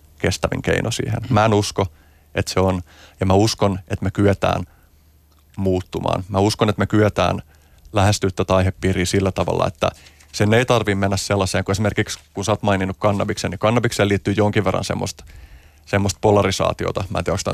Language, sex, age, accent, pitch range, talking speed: Finnish, male, 30-49, native, 95-105 Hz, 175 wpm